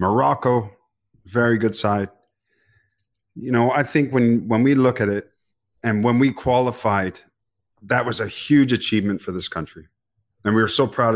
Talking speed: 165 wpm